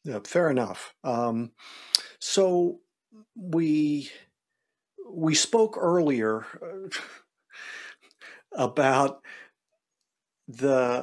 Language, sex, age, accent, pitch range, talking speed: English, male, 50-69, American, 115-150 Hz, 60 wpm